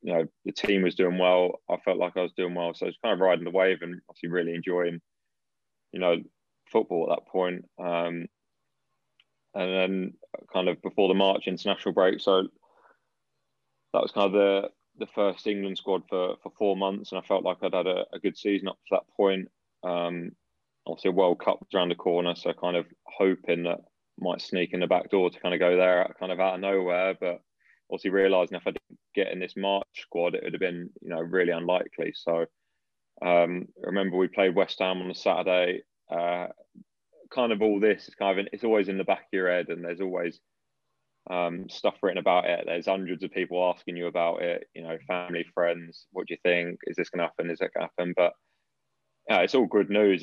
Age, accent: 20-39, British